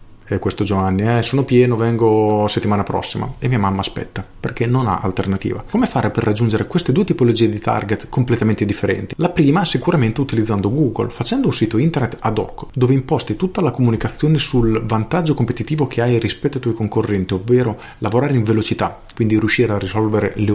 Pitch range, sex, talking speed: 100-125 Hz, male, 180 wpm